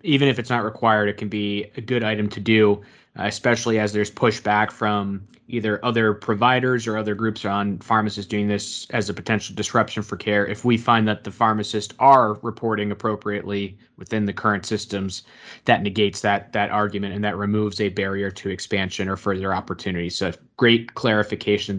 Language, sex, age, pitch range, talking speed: English, male, 20-39, 105-120 Hz, 180 wpm